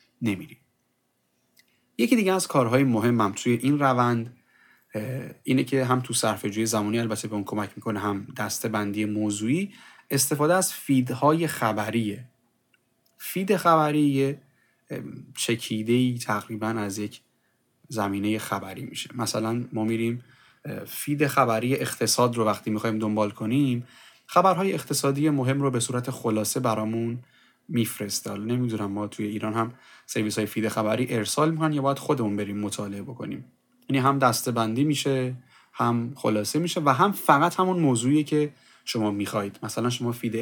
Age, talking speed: 30-49, 140 wpm